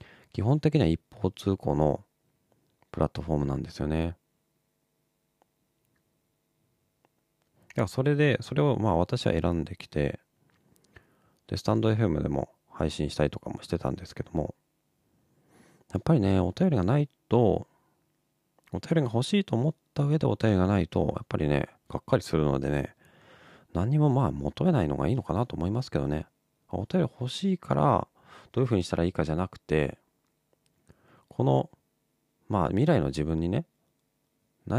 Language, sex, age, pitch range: Japanese, male, 40-59, 80-130 Hz